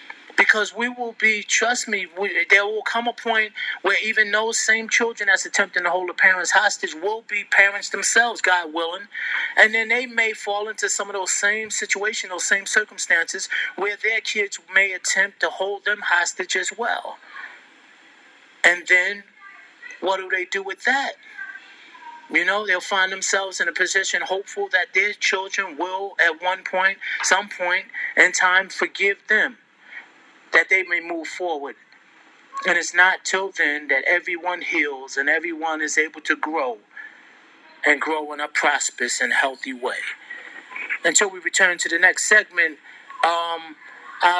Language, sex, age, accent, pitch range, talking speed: English, male, 30-49, American, 175-215 Hz, 160 wpm